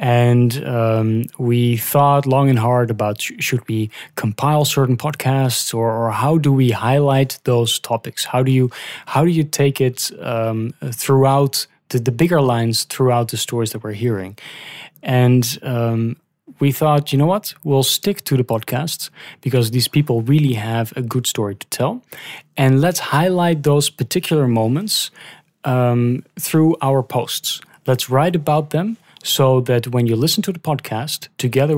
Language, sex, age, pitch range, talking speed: English, male, 20-39, 115-145 Hz, 165 wpm